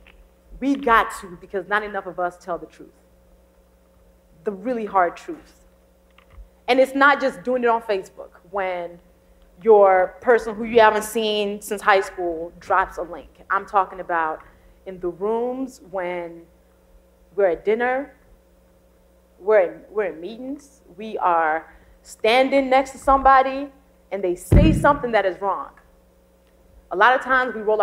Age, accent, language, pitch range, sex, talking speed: 30-49, American, English, 160-230 Hz, female, 150 wpm